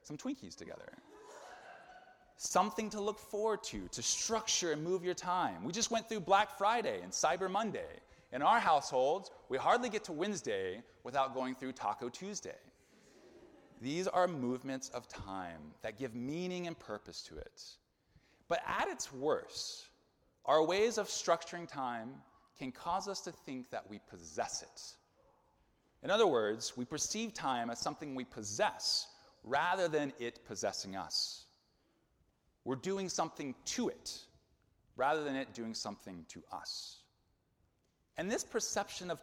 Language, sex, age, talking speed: English, male, 30-49, 150 wpm